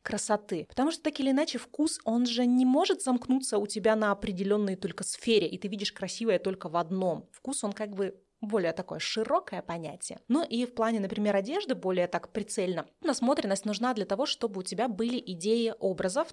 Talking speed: 190 wpm